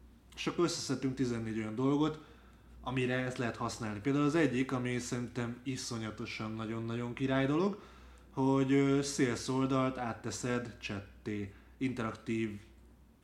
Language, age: Hungarian, 20-39